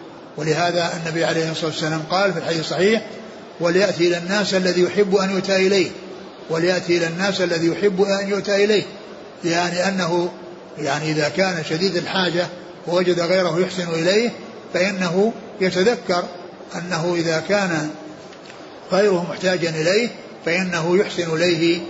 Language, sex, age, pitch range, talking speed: Arabic, male, 60-79, 165-190 Hz, 130 wpm